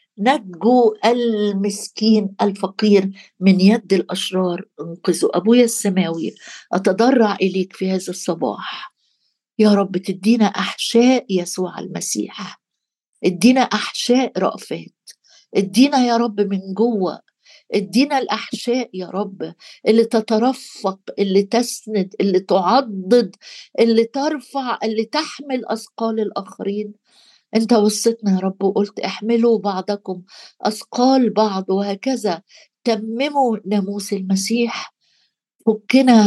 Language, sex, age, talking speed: Arabic, female, 60-79, 95 wpm